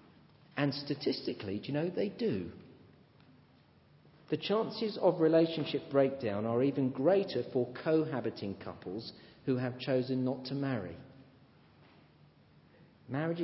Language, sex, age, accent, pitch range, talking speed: English, male, 50-69, British, 125-185 Hz, 110 wpm